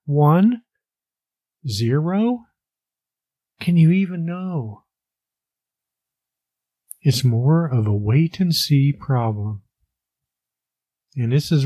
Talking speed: 75 wpm